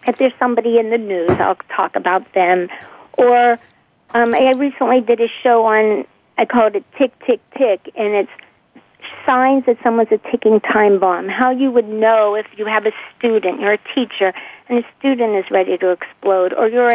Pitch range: 200-260 Hz